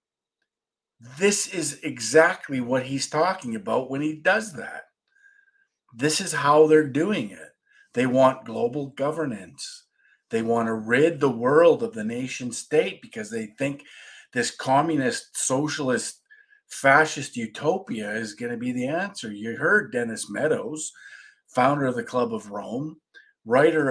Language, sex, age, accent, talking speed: English, male, 50-69, American, 140 wpm